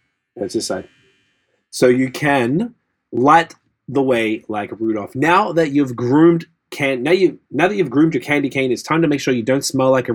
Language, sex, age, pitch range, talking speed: English, male, 30-49, 125-155 Hz, 215 wpm